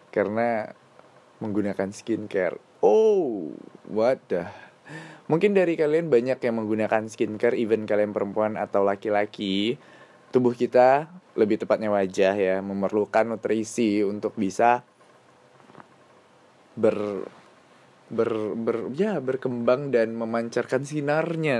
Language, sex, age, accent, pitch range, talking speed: Indonesian, male, 20-39, native, 105-130 Hz, 95 wpm